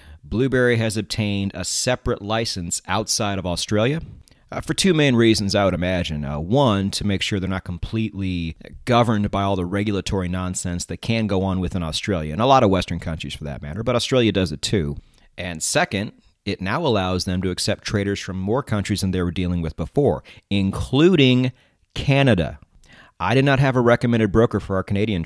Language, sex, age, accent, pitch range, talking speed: English, male, 30-49, American, 90-115 Hz, 190 wpm